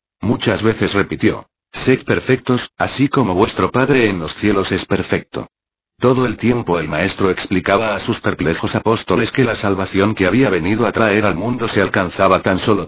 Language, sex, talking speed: Spanish, male, 175 wpm